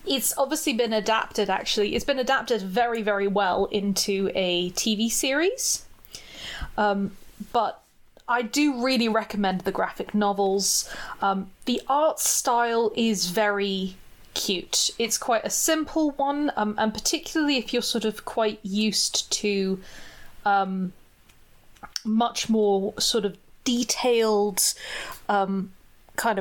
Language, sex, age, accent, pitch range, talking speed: English, female, 20-39, British, 200-240 Hz, 125 wpm